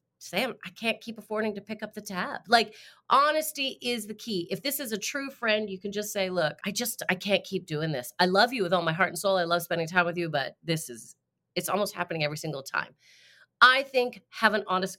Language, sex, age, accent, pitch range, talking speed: English, female, 30-49, American, 175-245 Hz, 250 wpm